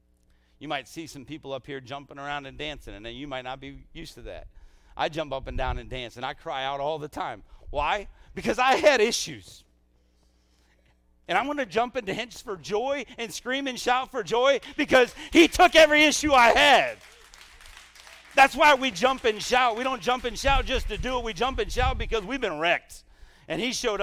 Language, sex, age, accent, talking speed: English, male, 50-69, American, 215 wpm